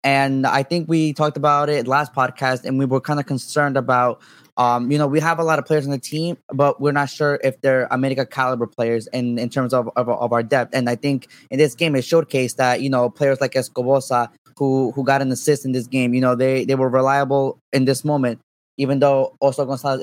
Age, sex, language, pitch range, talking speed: 20-39, male, English, 125-140 Hz, 245 wpm